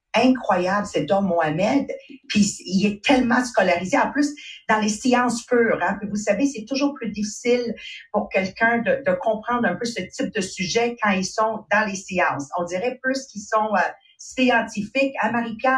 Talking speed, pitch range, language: 180 wpm, 190-265 Hz, English